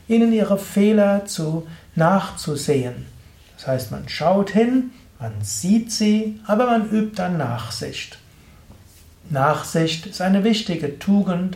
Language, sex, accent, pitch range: German, male, German, 135-185 Hz